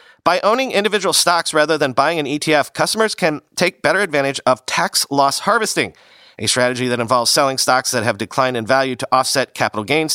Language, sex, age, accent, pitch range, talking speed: English, male, 40-59, American, 125-175 Hz, 195 wpm